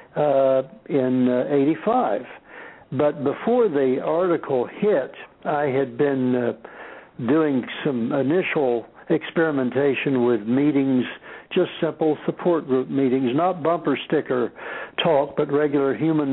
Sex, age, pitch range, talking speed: male, 60-79, 130-170 Hz, 115 wpm